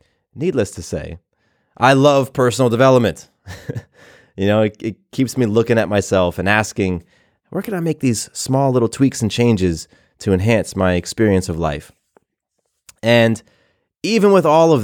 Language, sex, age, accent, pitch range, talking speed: English, male, 30-49, American, 90-115 Hz, 160 wpm